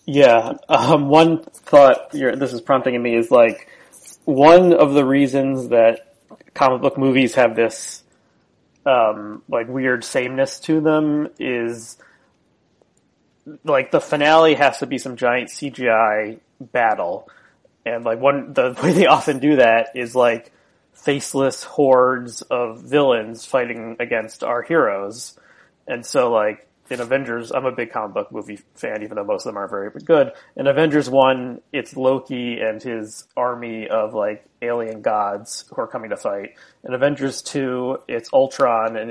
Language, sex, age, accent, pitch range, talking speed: English, male, 30-49, American, 115-140 Hz, 155 wpm